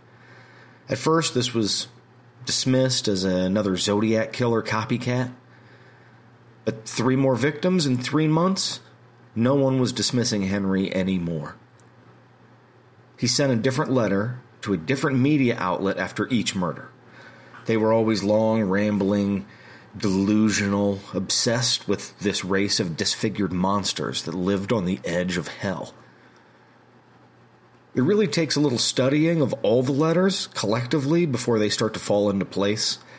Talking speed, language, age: 135 wpm, English, 40-59